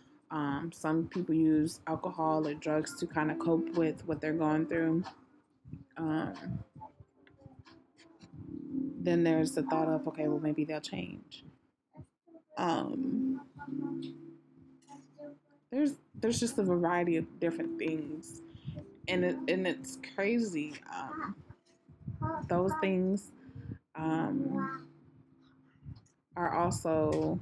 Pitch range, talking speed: 150-175 Hz, 105 wpm